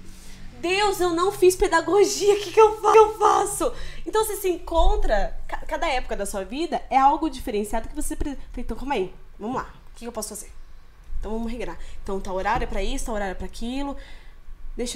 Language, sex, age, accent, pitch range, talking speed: Portuguese, female, 10-29, Brazilian, 200-285 Hz, 210 wpm